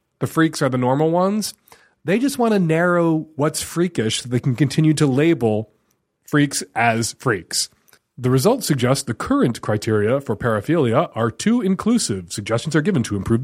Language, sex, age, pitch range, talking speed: English, male, 30-49, 125-200 Hz, 170 wpm